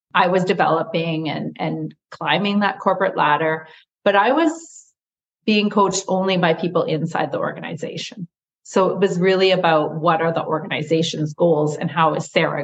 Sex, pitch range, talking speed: female, 160-195 Hz, 160 wpm